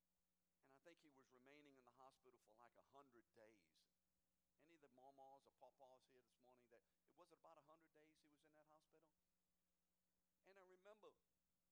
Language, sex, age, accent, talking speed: English, male, 60-79, American, 180 wpm